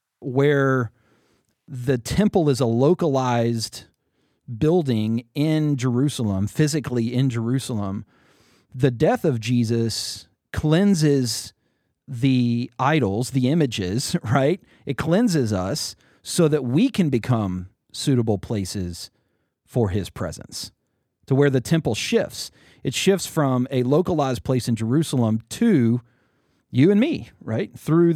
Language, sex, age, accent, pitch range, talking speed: English, male, 40-59, American, 115-155 Hz, 115 wpm